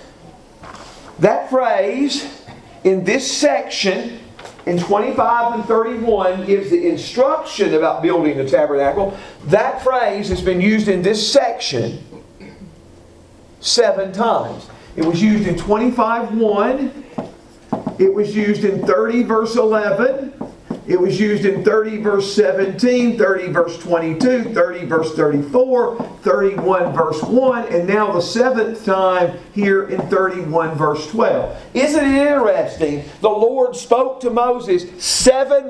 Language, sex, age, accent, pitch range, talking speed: English, male, 50-69, American, 175-235 Hz, 125 wpm